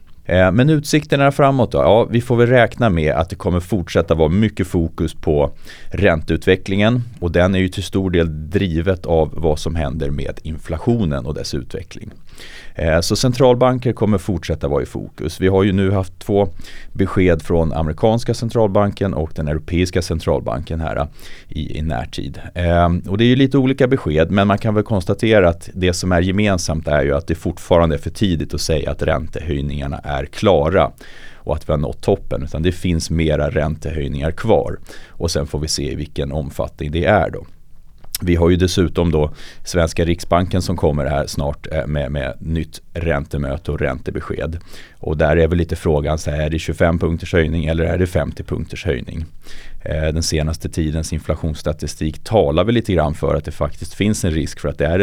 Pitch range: 75-95 Hz